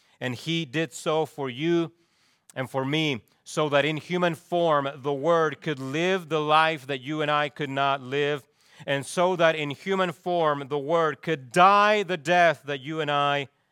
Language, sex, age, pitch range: English, male, 40-59, 110-145 Hz